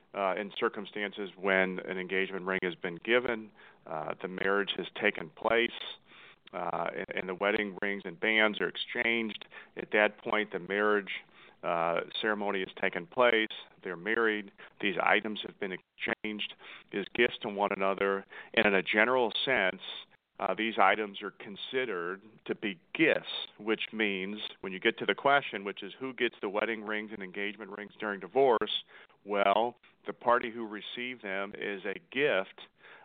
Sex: male